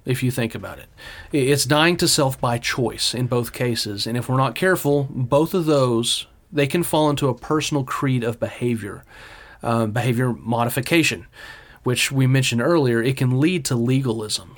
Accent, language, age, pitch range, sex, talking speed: American, English, 30-49, 115-145 Hz, male, 175 wpm